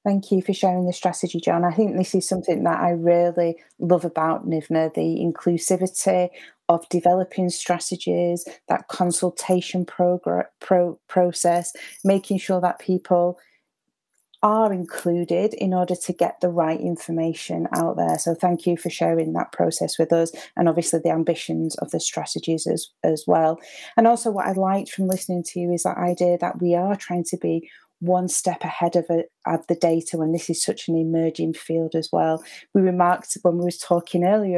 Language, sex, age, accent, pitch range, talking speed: English, female, 30-49, British, 165-185 Hz, 175 wpm